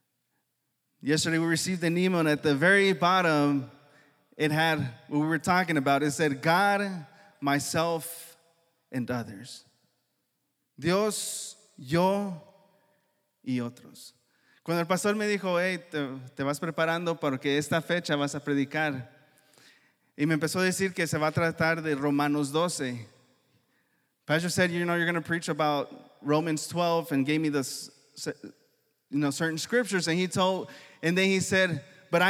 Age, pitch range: 20-39, 145-185 Hz